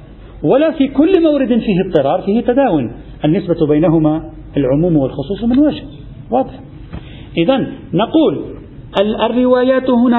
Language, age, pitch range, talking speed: Arabic, 50-69, 150-220 Hz, 110 wpm